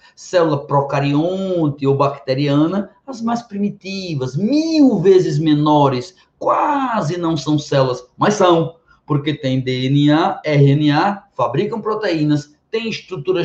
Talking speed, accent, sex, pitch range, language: 105 wpm, Brazilian, male, 140-190 Hz, Portuguese